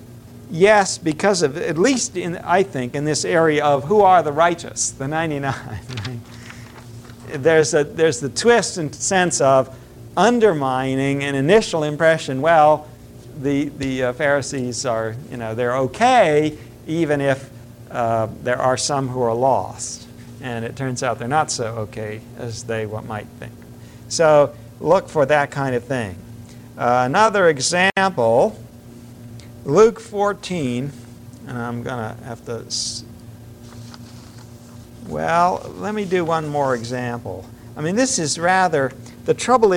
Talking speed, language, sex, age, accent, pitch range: 140 wpm, English, male, 50-69, American, 120-165 Hz